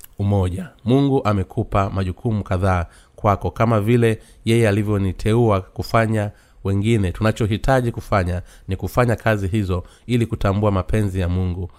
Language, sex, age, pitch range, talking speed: Swahili, male, 30-49, 95-115 Hz, 115 wpm